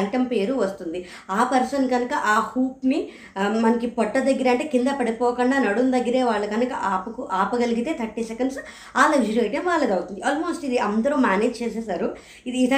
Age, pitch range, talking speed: 20-39, 215-255 Hz, 140 wpm